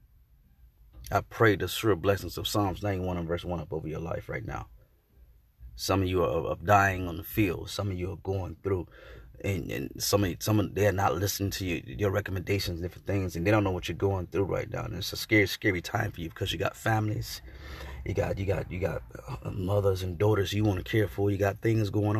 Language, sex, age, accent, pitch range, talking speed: English, male, 30-49, American, 90-105 Hz, 245 wpm